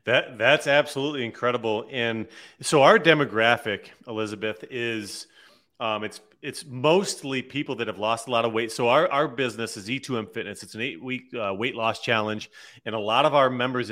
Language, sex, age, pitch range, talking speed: English, male, 30-49, 110-150 Hz, 185 wpm